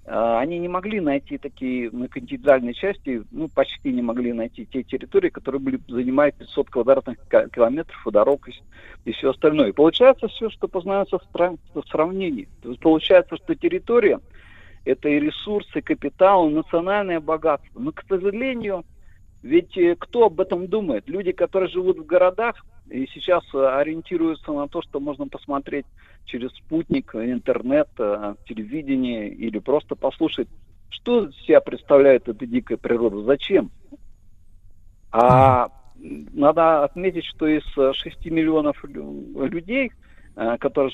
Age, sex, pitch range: 50-69, male, 130-195 Hz